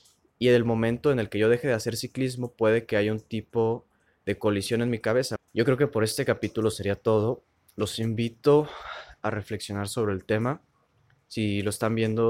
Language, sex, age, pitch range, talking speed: Spanish, male, 20-39, 100-115 Hz, 200 wpm